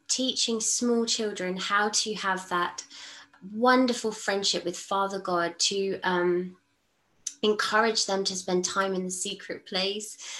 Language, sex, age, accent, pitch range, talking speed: English, female, 20-39, British, 190-235 Hz, 135 wpm